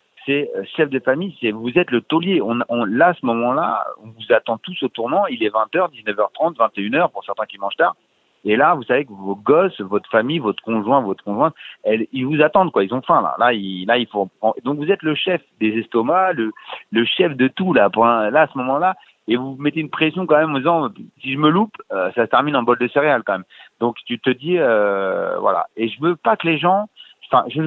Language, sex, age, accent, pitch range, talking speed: French, male, 40-59, French, 115-155 Hz, 240 wpm